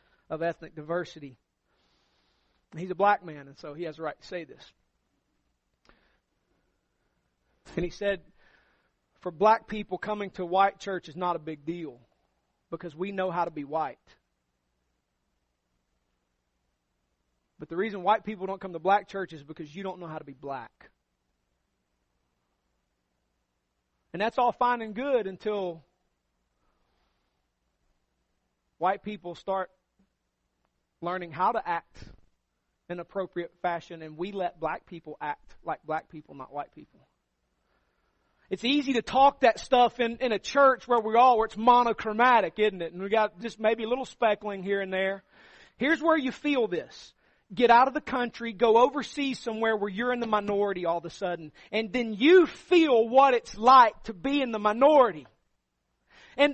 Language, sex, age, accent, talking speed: English, male, 40-59, American, 160 wpm